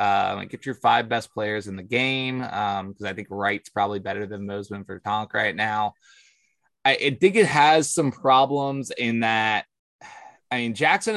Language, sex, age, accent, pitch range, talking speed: English, male, 20-39, American, 105-130 Hz, 190 wpm